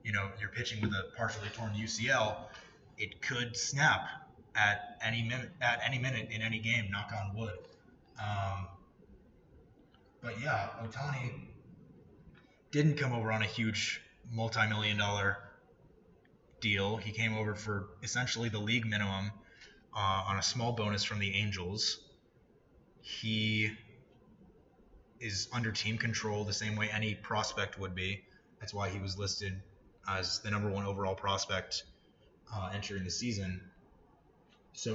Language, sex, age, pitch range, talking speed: English, male, 20-39, 100-115 Hz, 135 wpm